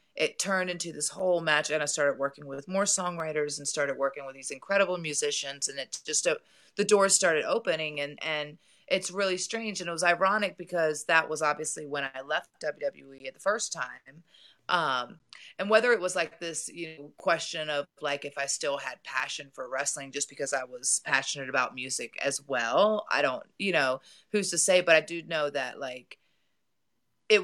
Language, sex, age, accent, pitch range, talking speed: English, female, 30-49, American, 135-170 Hz, 200 wpm